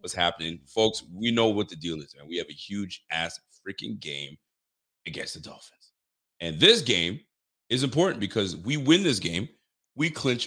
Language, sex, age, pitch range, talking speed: English, male, 30-49, 90-125 Hz, 185 wpm